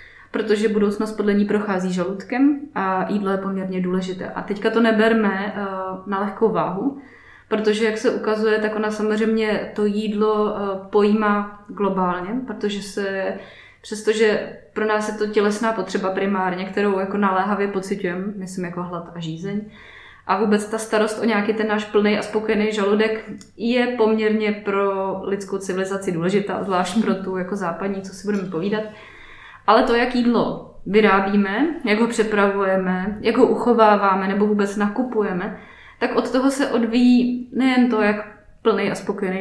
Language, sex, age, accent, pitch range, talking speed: Czech, female, 20-39, native, 195-220 Hz, 150 wpm